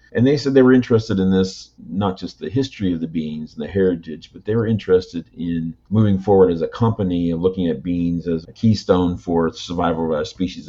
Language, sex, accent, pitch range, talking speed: English, male, American, 80-95 Hz, 225 wpm